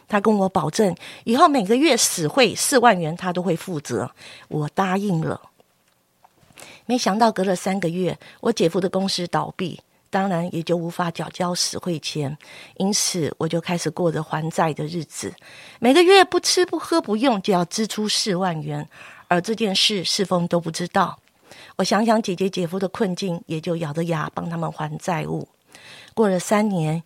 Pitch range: 170-215 Hz